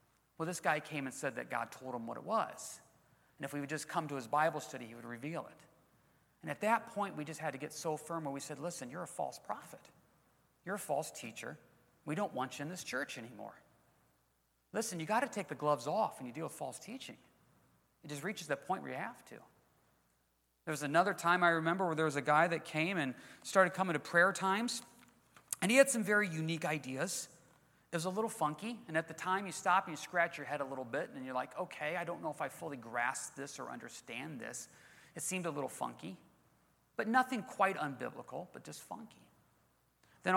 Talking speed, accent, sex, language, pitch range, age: 230 wpm, American, male, English, 135-180 Hz, 40-59